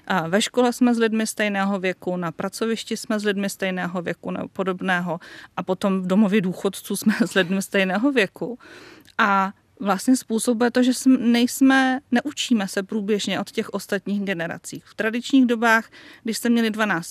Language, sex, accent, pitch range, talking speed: Czech, female, native, 195-225 Hz, 170 wpm